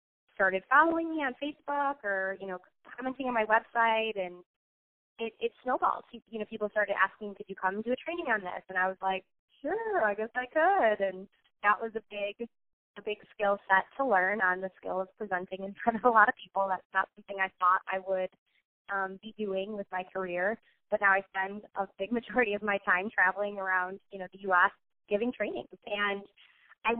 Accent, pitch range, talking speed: American, 190-230 Hz, 210 wpm